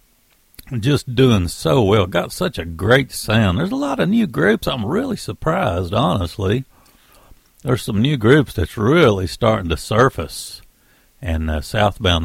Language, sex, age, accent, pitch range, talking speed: English, male, 60-79, American, 95-135 Hz, 150 wpm